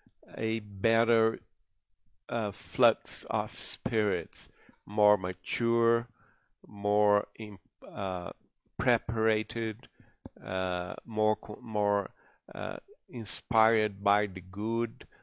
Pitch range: 100-115 Hz